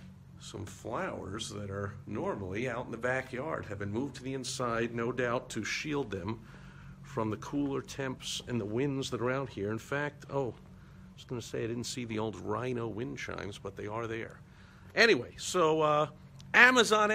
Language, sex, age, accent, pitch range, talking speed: English, male, 50-69, American, 115-140 Hz, 195 wpm